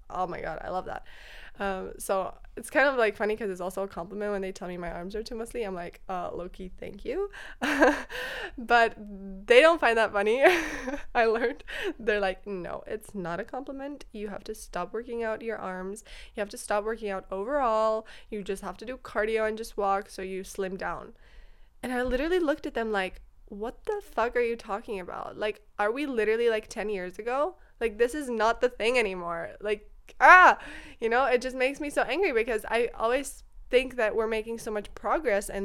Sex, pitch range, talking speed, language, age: female, 195-245 Hz, 210 wpm, English, 20-39